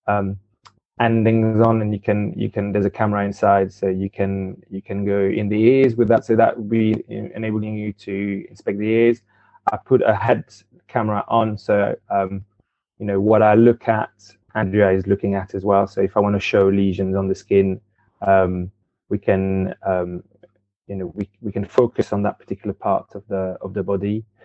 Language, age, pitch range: English, 20-39, 100-115 Hz